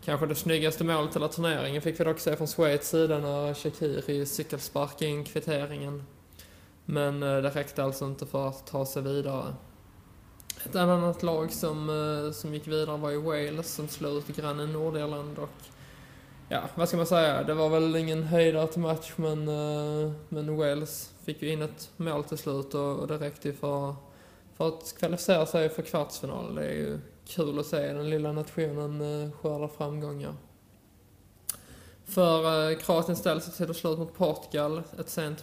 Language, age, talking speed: English, 20-39, 160 wpm